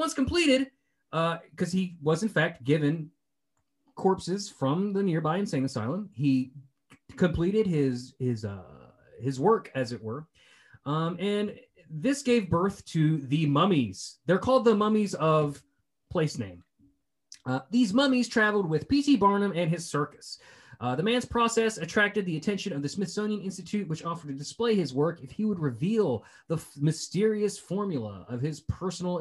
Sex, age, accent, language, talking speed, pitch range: male, 30-49, American, English, 160 wpm, 135-200 Hz